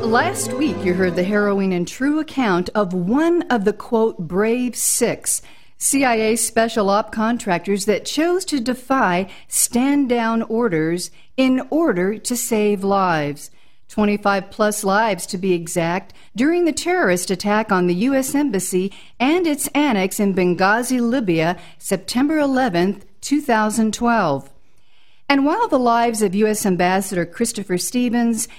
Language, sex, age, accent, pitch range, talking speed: English, female, 50-69, American, 185-255 Hz, 135 wpm